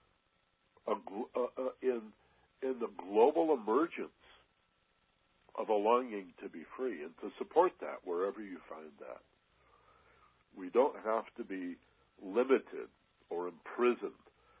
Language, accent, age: English, American, 60-79